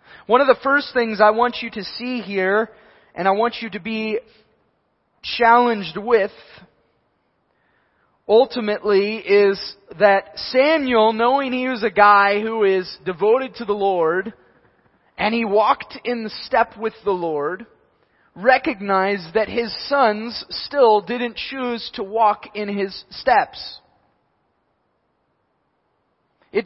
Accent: American